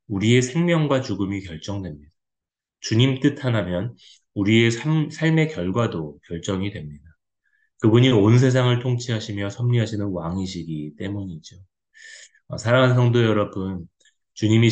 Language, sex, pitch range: Korean, male, 90-120 Hz